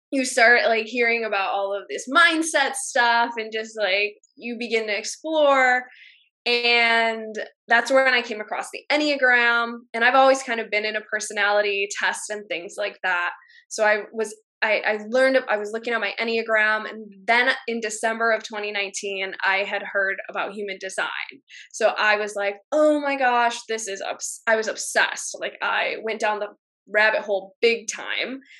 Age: 10-29